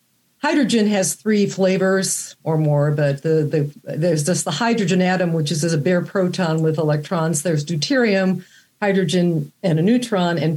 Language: English